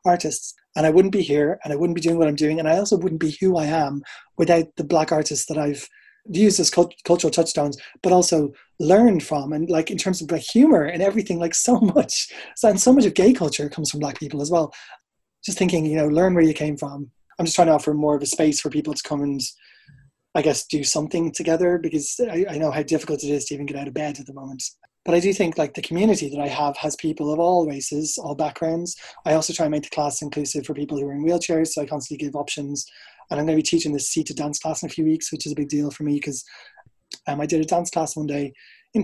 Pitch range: 150-175 Hz